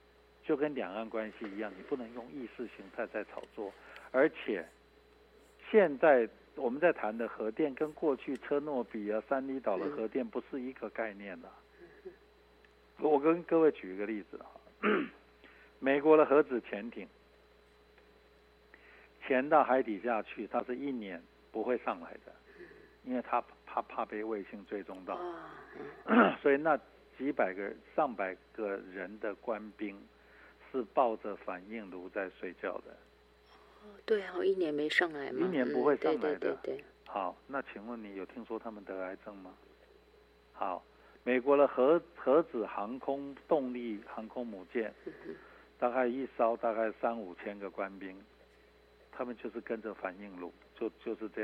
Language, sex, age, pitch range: Chinese, male, 60-79, 95-140 Hz